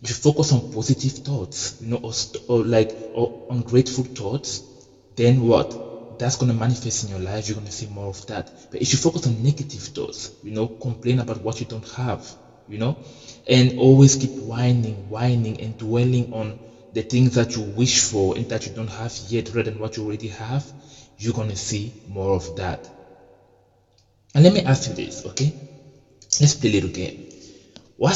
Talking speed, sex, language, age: 195 wpm, male, English, 20-39